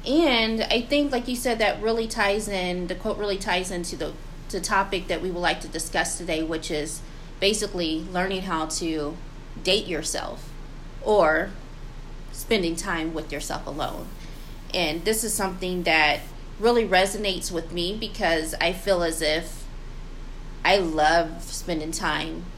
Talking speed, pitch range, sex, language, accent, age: 150 wpm, 160-185 Hz, female, English, American, 30-49